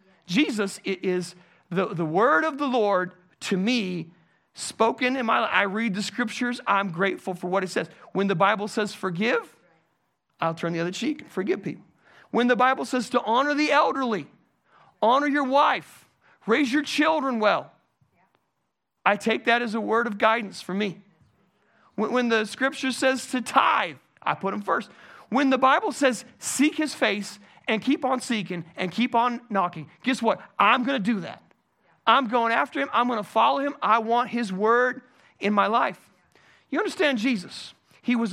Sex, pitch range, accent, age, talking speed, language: male, 195-255 Hz, American, 40-59, 180 wpm, English